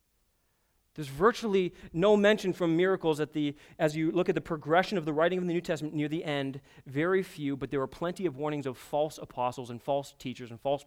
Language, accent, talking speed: English, American, 220 wpm